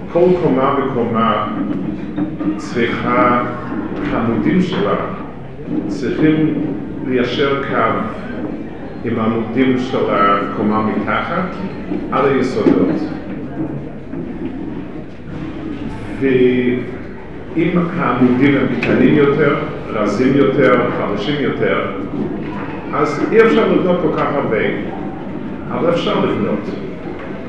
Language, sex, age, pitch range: English, male, 50-69, 115-140 Hz